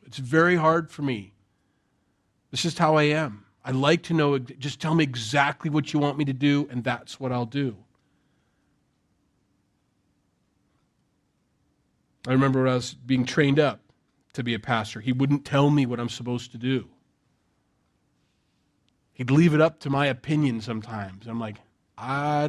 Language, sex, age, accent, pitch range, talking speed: English, male, 40-59, American, 125-160 Hz, 165 wpm